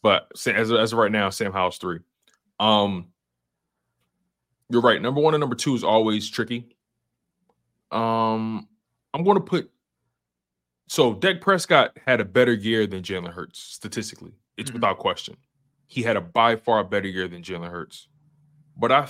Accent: American